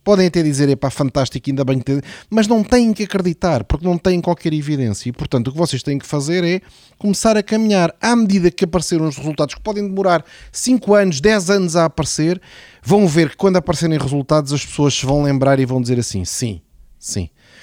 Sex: male